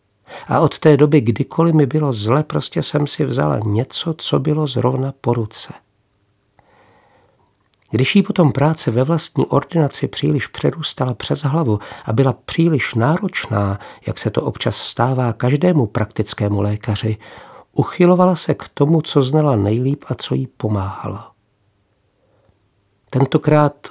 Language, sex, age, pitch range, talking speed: Czech, male, 50-69, 105-150 Hz, 135 wpm